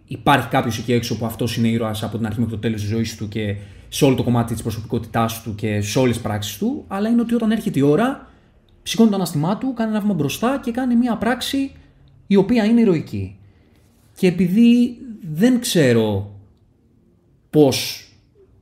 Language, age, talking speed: Greek, 20-39, 190 wpm